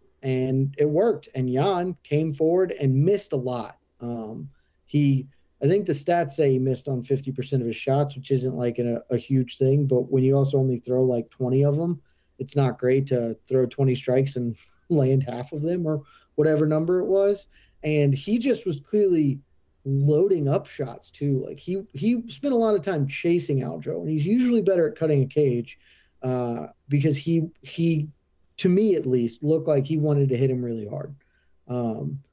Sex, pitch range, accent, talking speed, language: male, 130-155 Hz, American, 195 wpm, English